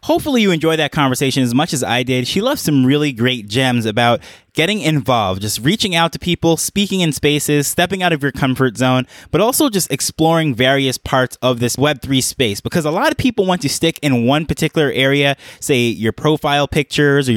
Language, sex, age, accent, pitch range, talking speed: English, male, 20-39, American, 130-175 Hz, 205 wpm